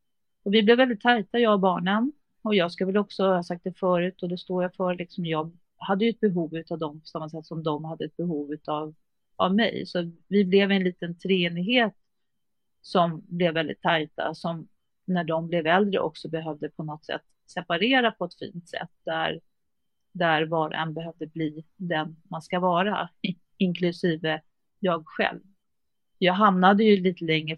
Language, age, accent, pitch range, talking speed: Swedish, 40-59, native, 165-190 Hz, 185 wpm